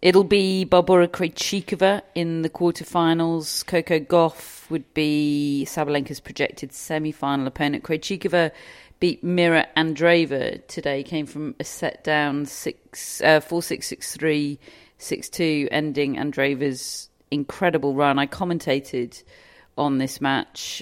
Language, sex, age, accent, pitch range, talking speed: English, female, 40-59, British, 150-185 Hz, 125 wpm